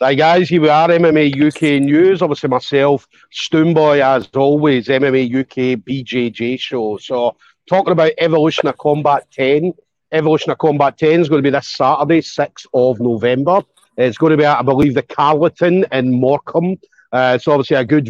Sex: male